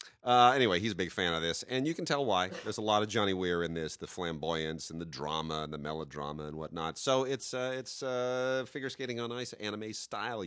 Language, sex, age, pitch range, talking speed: English, male, 40-59, 85-115 Hz, 235 wpm